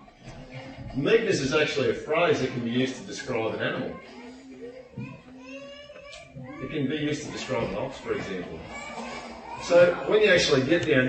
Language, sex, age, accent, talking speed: English, male, 40-59, Australian, 155 wpm